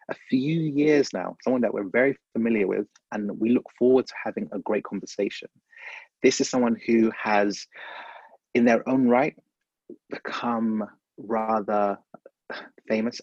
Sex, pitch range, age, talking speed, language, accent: male, 105-120 Hz, 30-49, 140 wpm, English, British